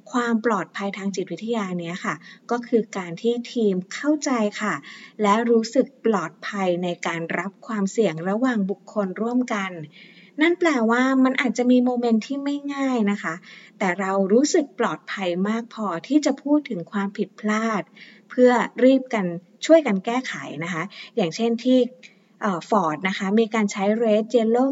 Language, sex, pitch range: Thai, female, 195-245 Hz